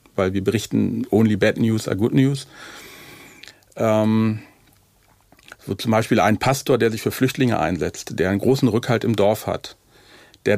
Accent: German